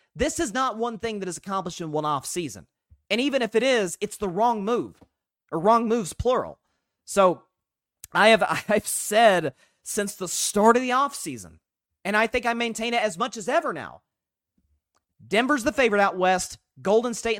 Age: 30-49